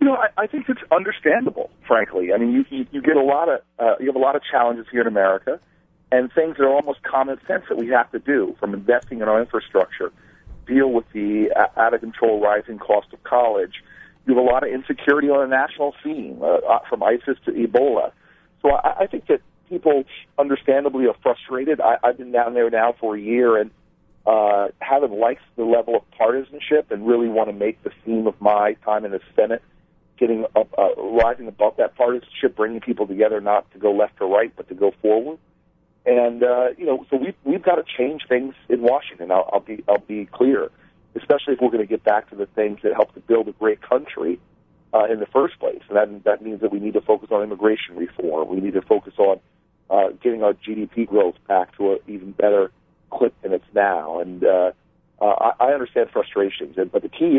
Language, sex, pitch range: English, male, 105-145 Hz